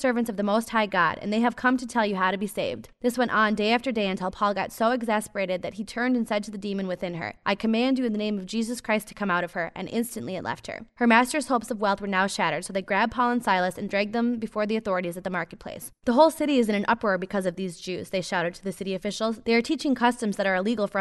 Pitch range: 195-235 Hz